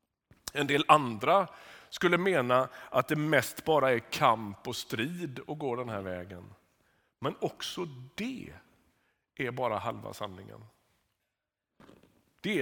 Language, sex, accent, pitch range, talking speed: Swedish, male, native, 120-155 Hz, 125 wpm